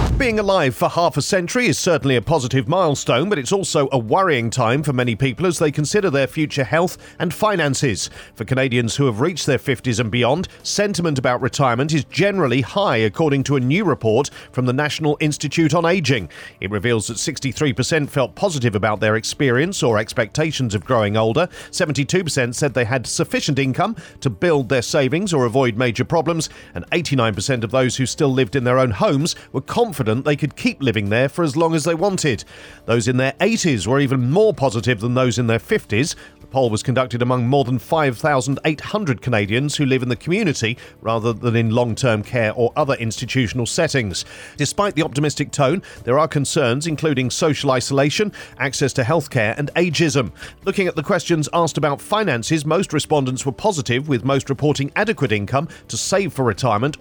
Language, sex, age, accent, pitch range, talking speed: English, male, 40-59, British, 125-160 Hz, 185 wpm